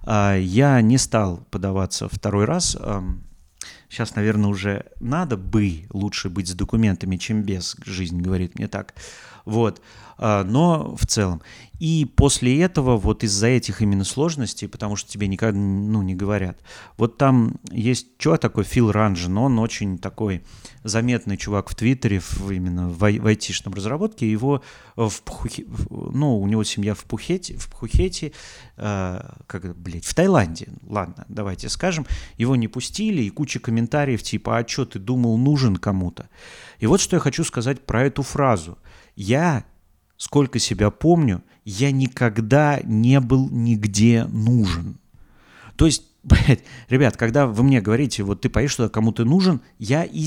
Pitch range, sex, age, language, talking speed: 100-135 Hz, male, 30-49, Russian, 150 wpm